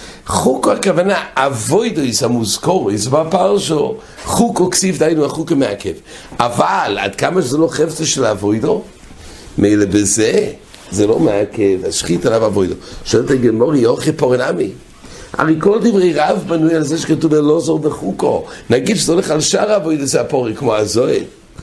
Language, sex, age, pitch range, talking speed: English, male, 60-79, 115-165 Hz, 135 wpm